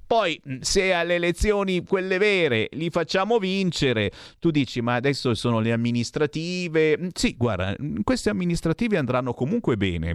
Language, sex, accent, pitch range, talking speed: Italian, male, native, 115-185 Hz, 135 wpm